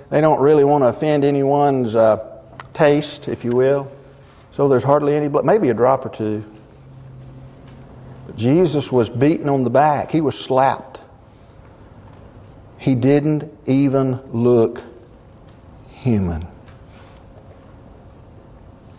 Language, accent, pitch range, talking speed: English, American, 110-140 Hz, 115 wpm